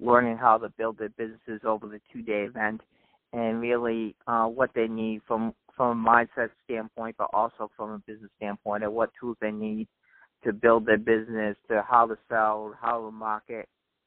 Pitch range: 110-120 Hz